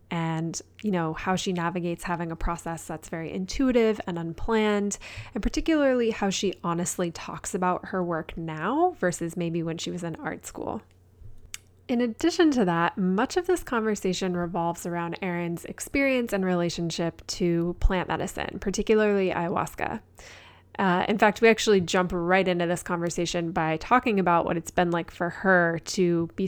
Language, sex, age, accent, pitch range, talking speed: English, female, 20-39, American, 170-215 Hz, 165 wpm